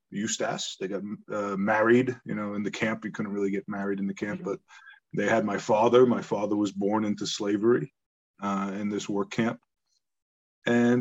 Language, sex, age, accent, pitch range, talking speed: English, male, 30-49, American, 105-125 Hz, 190 wpm